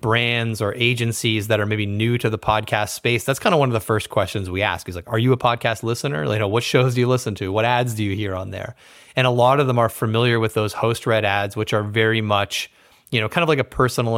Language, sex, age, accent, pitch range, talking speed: English, male, 30-49, American, 105-120 Hz, 280 wpm